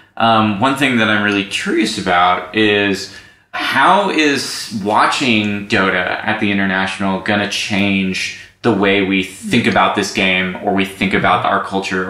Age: 20-39